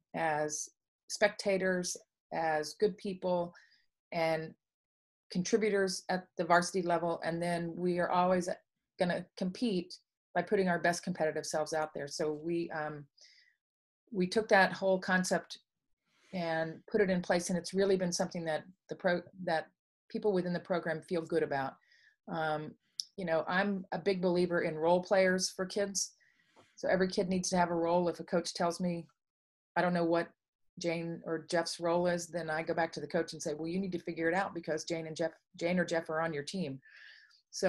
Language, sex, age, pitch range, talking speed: English, female, 40-59, 165-185 Hz, 190 wpm